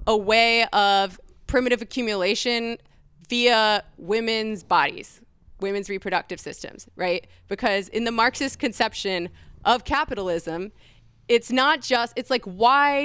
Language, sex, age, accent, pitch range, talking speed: English, female, 20-39, American, 180-235 Hz, 115 wpm